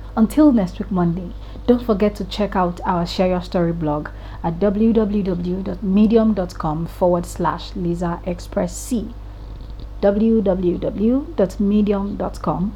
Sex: female